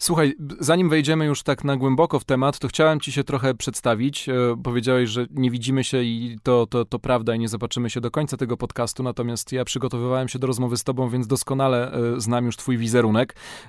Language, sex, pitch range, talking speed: Polish, male, 120-145 Hz, 205 wpm